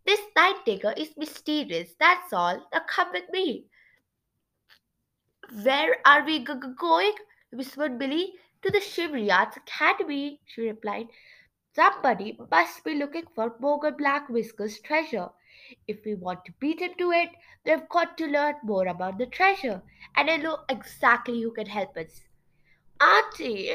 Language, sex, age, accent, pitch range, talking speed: English, female, 20-39, Indian, 210-320 Hz, 150 wpm